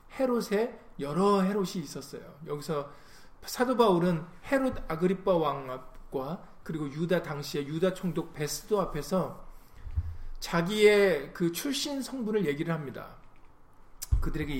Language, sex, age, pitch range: Korean, male, 40-59, 155-210 Hz